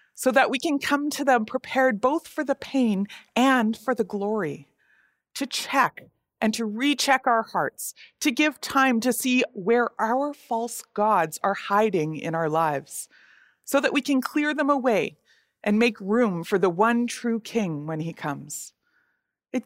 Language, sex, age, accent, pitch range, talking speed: English, female, 30-49, American, 190-260 Hz, 170 wpm